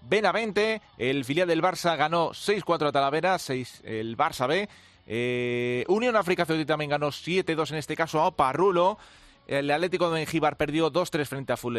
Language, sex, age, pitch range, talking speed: Spanish, male, 30-49, 135-180 Hz, 175 wpm